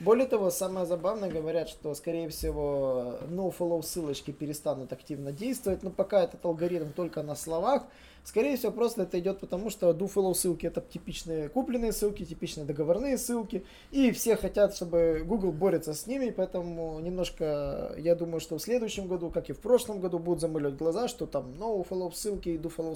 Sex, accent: male, native